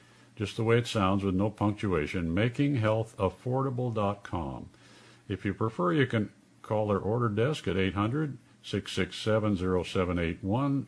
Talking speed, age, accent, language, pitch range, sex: 110 wpm, 50-69, American, English, 90-120 Hz, male